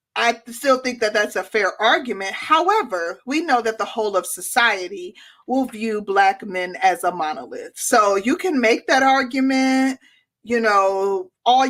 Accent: American